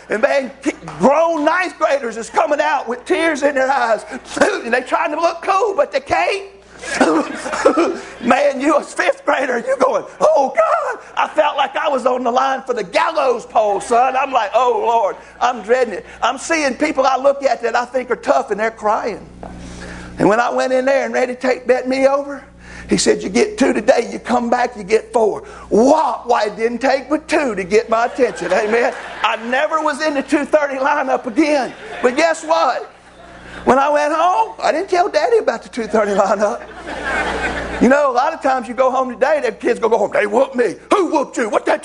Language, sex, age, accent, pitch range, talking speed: English, male, 50-69, American, 230-310 Hz, 215 wpm